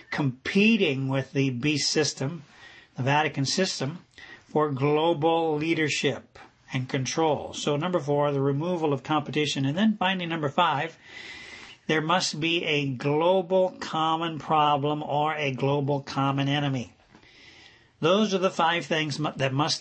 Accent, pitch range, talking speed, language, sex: American, 140-165 Hz, 135 wpm, English, male